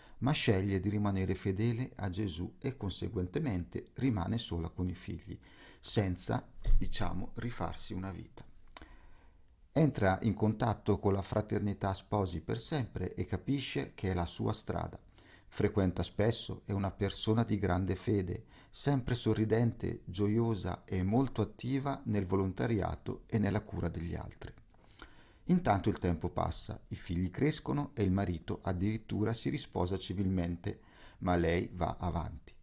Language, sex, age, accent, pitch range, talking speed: Italian, male, 50-69, native, 90-115 Hz, 135 wpm